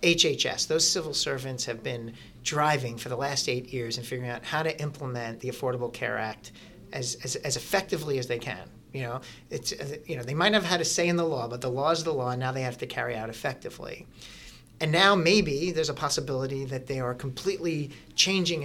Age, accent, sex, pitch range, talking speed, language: 40-59, American, male, 130-170 Hz, 220 wpm, English